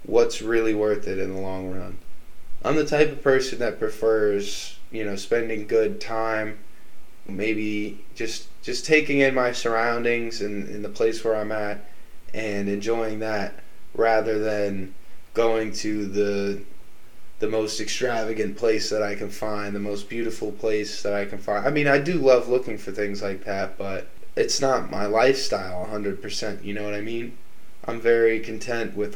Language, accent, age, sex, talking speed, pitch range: English, American, 20-39, male, 170 wpm, 100-115 Hz